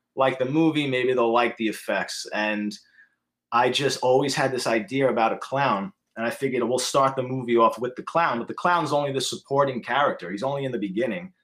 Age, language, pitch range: 30-49, English, 125-150 Hz